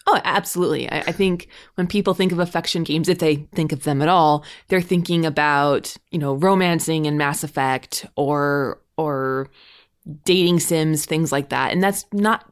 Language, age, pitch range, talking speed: English, 20-39, 150-180 Hz, 175 wpm